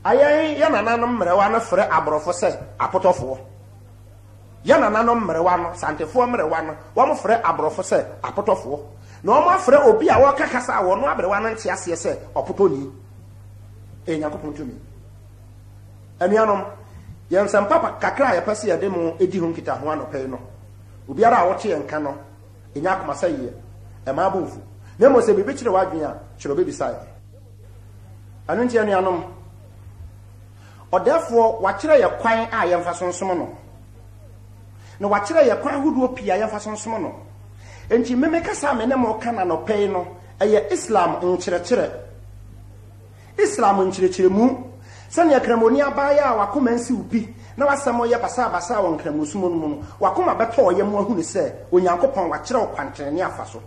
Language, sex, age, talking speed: English, male, 40-59, 140 wpm